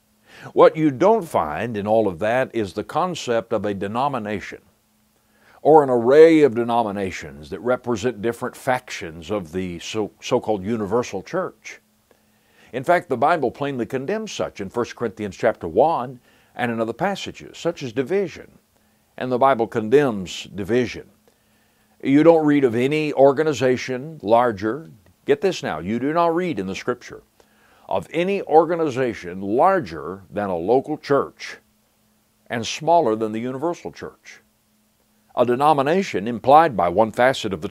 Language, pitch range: English, 110-155 Hz